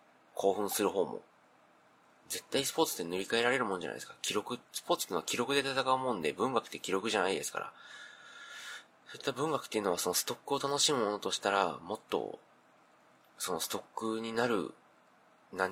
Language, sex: Japanese, male